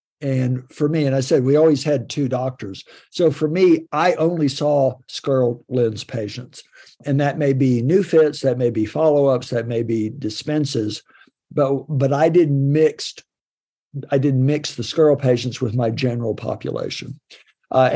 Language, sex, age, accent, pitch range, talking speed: English, male, 60-79, American, 120-150 Hz, 170 wpm